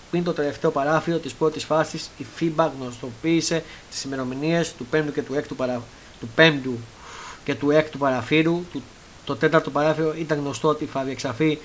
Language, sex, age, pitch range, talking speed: Greek, male, 30-49, 135-165 Hz, 140 wpm